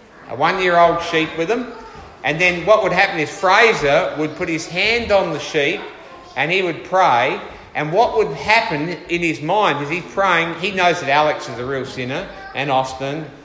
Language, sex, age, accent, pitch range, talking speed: English, male, 50-69, Australian, 140-190 Hz, 190 wpm